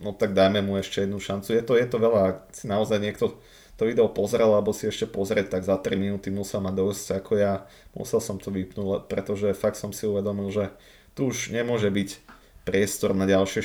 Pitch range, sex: 100-105 Hz, male